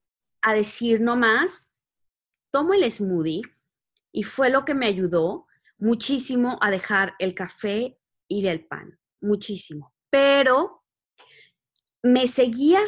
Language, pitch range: Spanish, 195-255 Hz